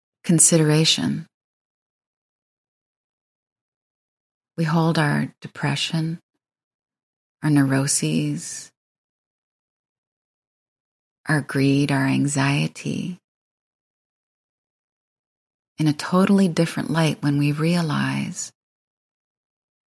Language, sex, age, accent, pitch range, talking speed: English, female, 30-49, American, 145-165 Hz, 55 wpm